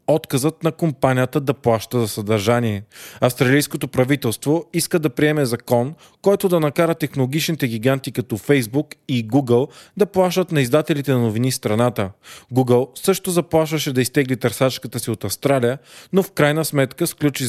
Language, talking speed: Bulgarian, 150 wpm